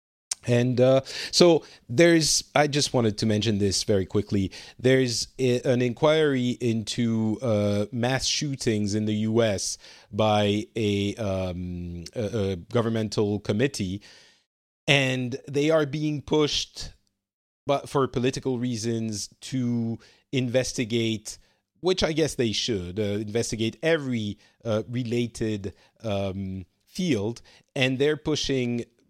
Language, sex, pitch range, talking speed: English, male, 105-130 Hz, 110 wpm